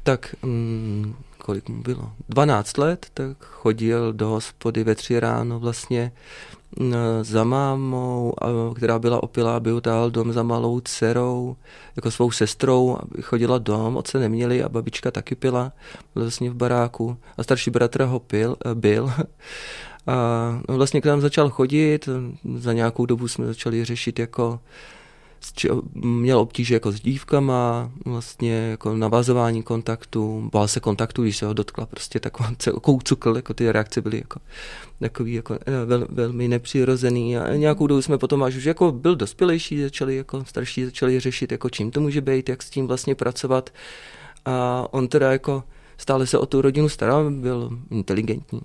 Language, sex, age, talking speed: Czech, male, 20-39, 150 wpm